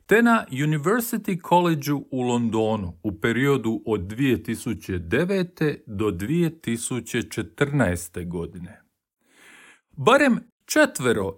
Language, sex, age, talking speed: Croatian, male, 40-59, 80 wpm